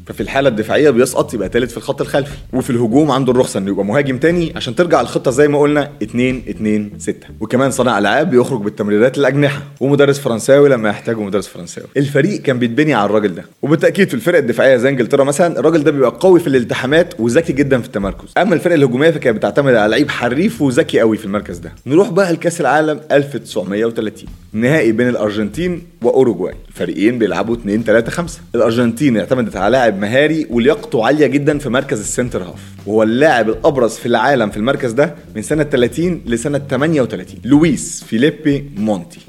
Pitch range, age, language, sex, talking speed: 110-145 Hz, 30-49, Arabic, male, 175 wpm